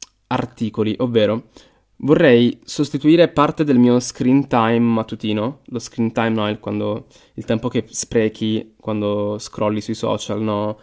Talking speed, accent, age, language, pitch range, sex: 135 wpm, native, 20-39, Italian, 110-125 Hz, male